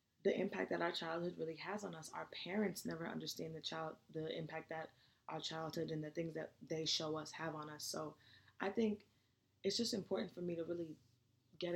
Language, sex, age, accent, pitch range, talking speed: English, female, 20-39, American, 120-175 Hz, 210 wpm